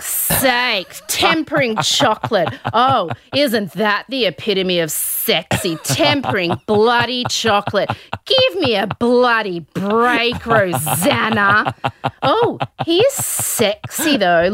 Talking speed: 100 wpm